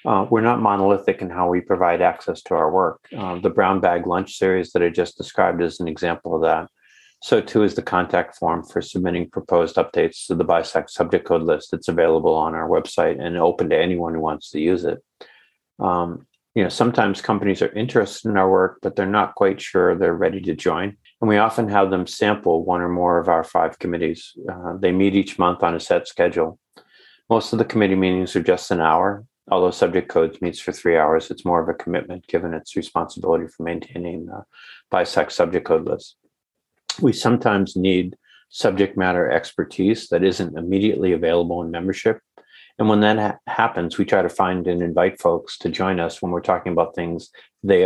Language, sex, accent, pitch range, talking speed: English, male, American, 85-100 Hz, 205 wpm